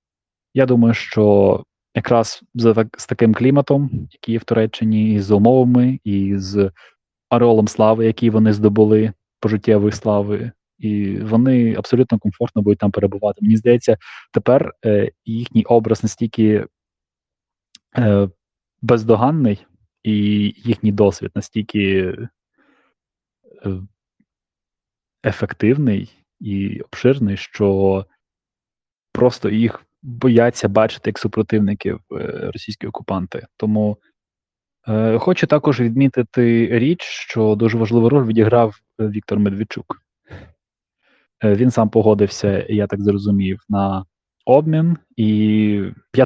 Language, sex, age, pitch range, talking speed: Ukrainian, male, 20-39, 105-120 Hz, 105 wpm